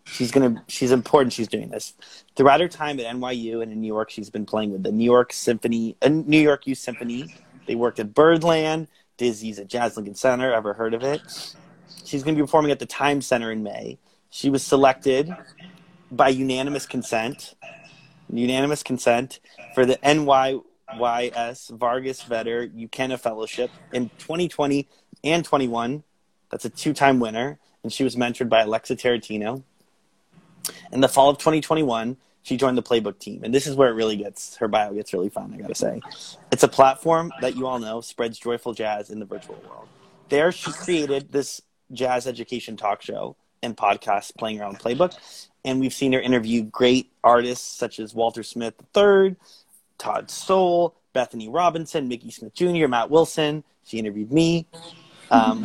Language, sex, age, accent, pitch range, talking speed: English, male, 20-39, American, 115-155 Hz, 175 wpm